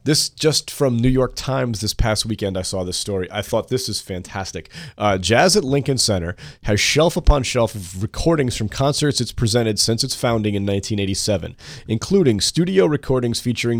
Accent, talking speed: American, 185 wpm